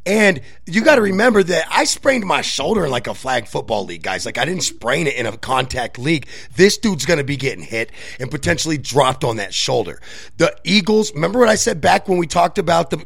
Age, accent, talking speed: 30-49, American, 235 wpm